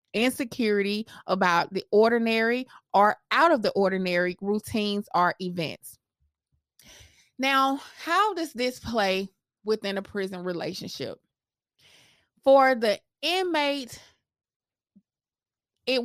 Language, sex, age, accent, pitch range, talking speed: English, female, 20-39, American, 185-235 Hz, 95 wpm